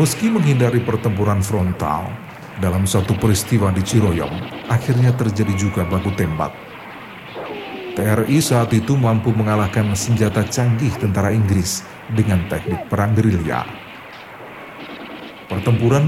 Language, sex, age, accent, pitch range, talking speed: Indonesian, male, 50-69, native, 100-125 Hz, 105 wpm